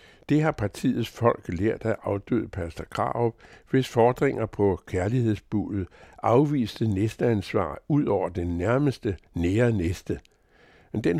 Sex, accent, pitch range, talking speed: male, American, 100-125 Hz, 130 wpm